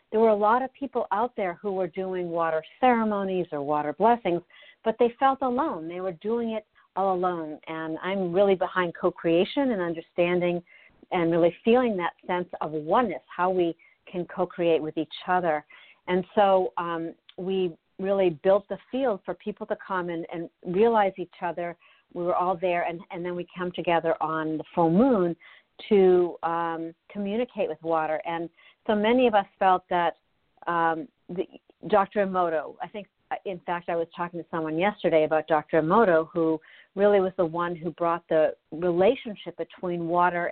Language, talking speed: English, 175 wpm